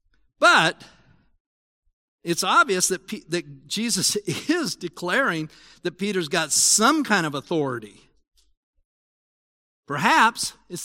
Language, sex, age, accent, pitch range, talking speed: English, male, 50-69, American, 160-220 Hz, 95 wpm